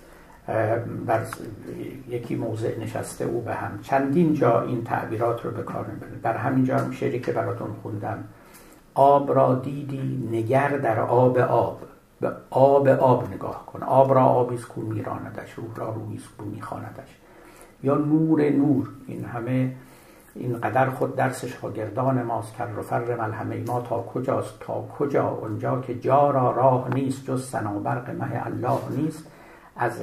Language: Persian